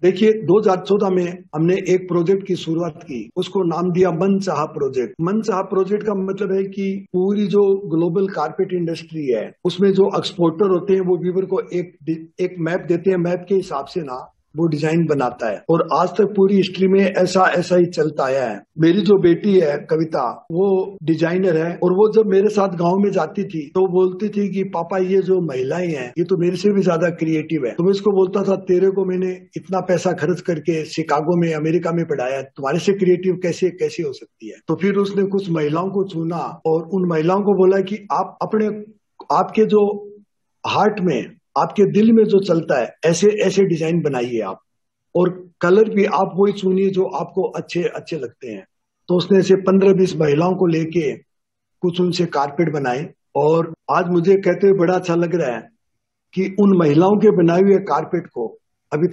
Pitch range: 165-195 Hz